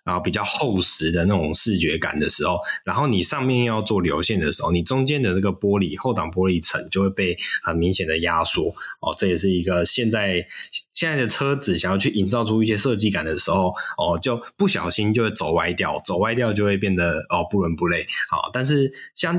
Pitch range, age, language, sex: 90-130 Hz, 20-39, Chinese, male